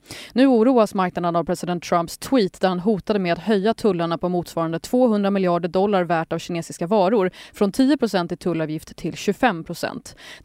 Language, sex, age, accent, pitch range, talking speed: English, female, 30-49, Swedish, 175-225 Hz, 165 wpm